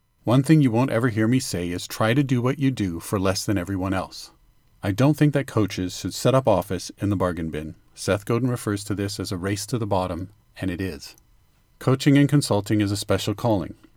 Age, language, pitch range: 40-59, English, 100-130 Hz